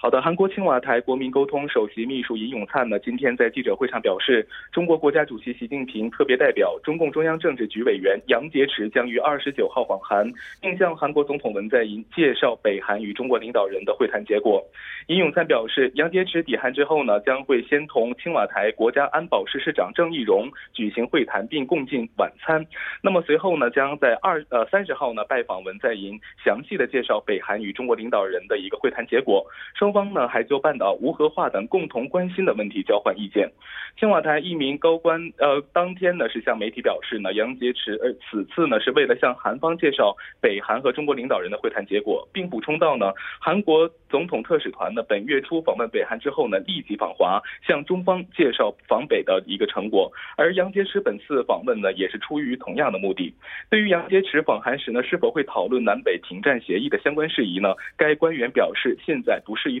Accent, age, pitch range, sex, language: Chinese, 20-39, 135-205 Hz, male, Korean